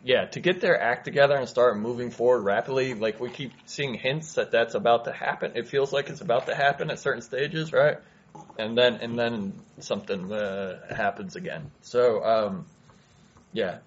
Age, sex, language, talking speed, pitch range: 20-39, male, English, 185 wpm, 110-135 Hz